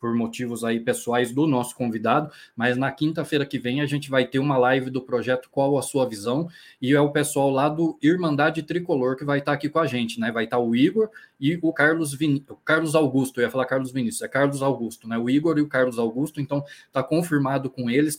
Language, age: Portuguese, 20-39